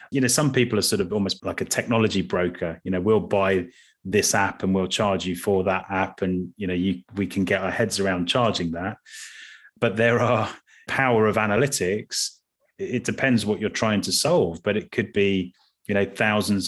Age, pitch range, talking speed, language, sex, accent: 30-49, 95-120 Hz, 200 wpm, English, male, British